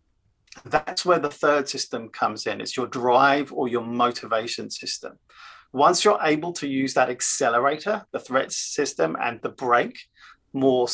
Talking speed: 155 wpm